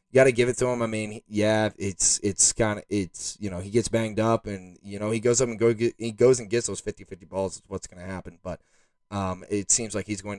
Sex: male